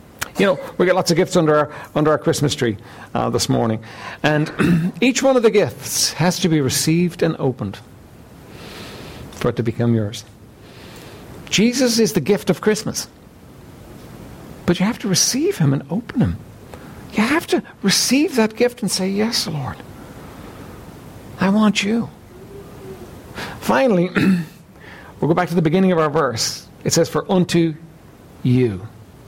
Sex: male